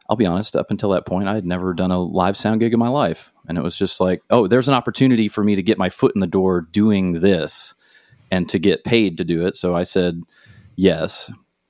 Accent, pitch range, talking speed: American, 85-100 Hz, 250 wpm